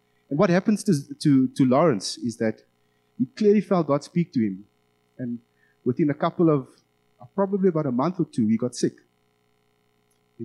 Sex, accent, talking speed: male, South African, 185 wpm